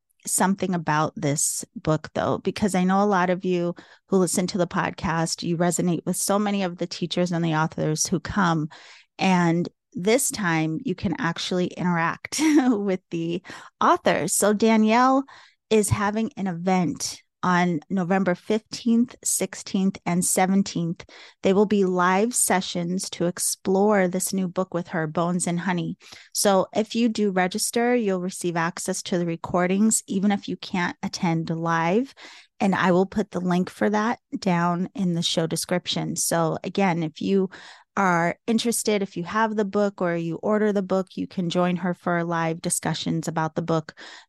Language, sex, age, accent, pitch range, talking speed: English, female, 30-49, American, 170-200 Hz, 165 wpm